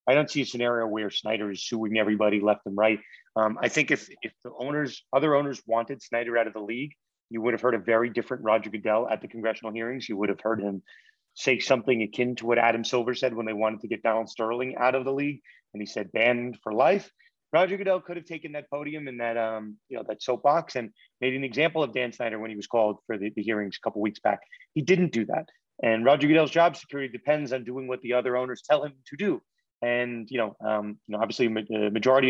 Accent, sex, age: American, male, 30-49